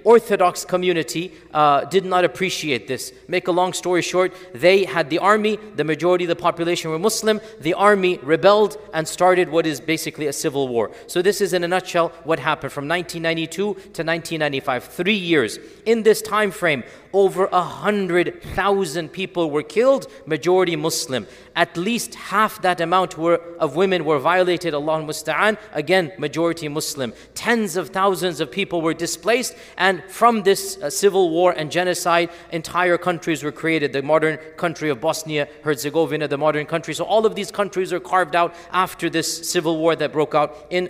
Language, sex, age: English, male, 40-59